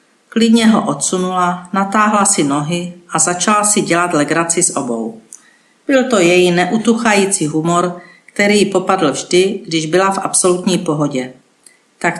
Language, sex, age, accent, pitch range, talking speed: Czech, female, 50-69, native, 170-200 Hz, 140 wpm